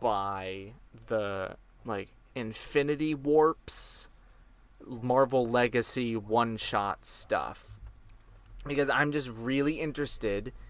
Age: 20-39